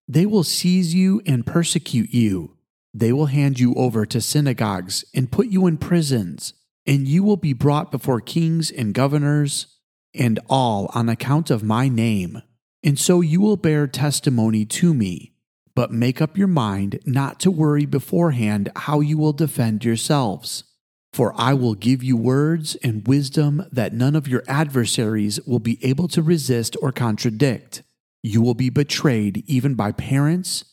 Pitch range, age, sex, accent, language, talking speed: 120-155 Hz, 40-59, male, American, English, 165 wpm